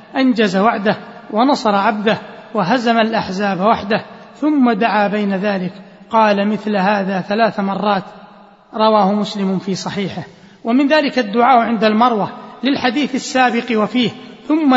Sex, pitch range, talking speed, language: male, 210-240 Hz, 120 wpm, Arabic